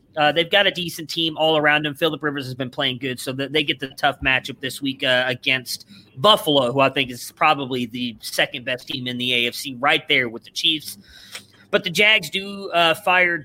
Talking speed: 215 wpm